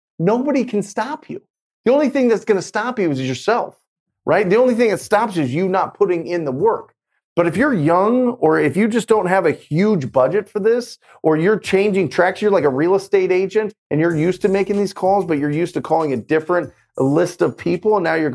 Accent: American